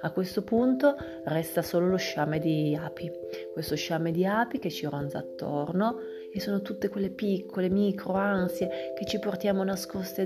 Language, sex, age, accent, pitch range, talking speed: Italian, female, 30-49, native, 165-215 Hz, 165 wpm